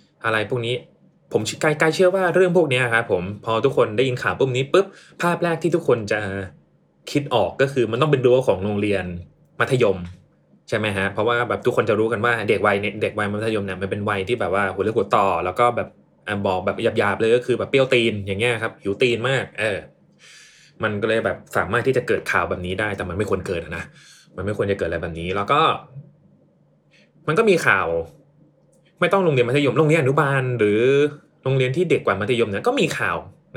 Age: 20-39